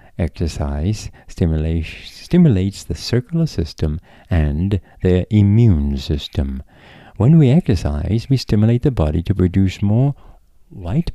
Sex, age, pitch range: male, 50-69, 80-115 Hz